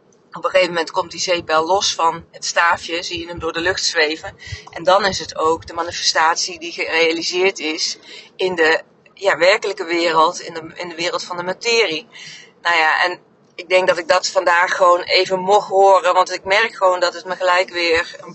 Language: Dutch